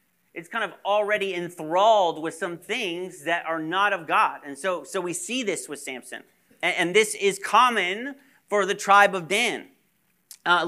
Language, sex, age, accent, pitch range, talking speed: English, male, 40-59, American, 170-210 Hz, 180 wpm